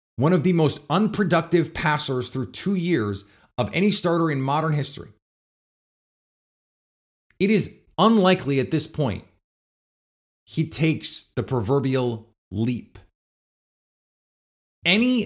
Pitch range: 110-170 Hz